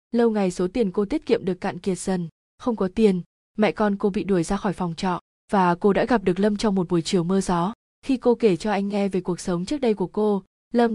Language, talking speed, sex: Vietnamese, 270 wpm, female